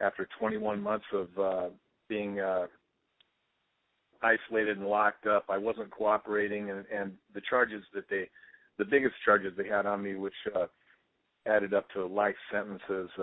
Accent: American